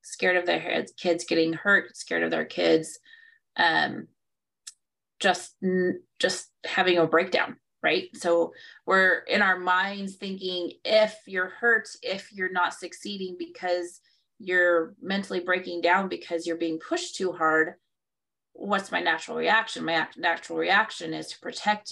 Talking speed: 140 wpm